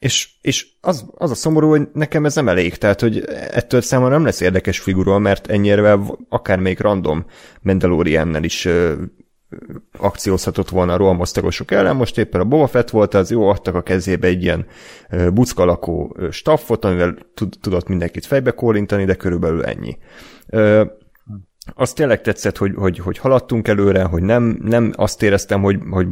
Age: 30-49